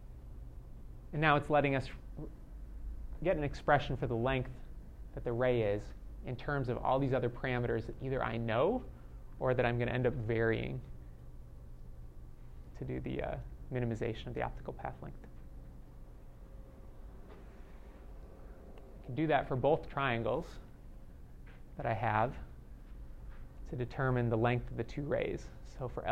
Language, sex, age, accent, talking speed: English, male, 30-49, American, 145 wpm